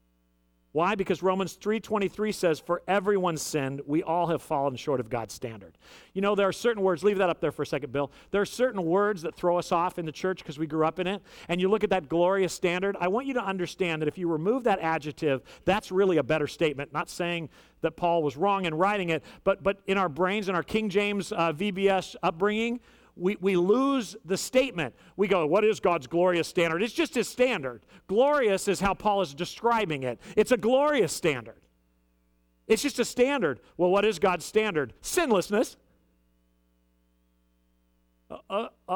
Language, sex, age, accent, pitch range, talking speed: English, male, 50-69, American, 150-210 Hz, 200 wpm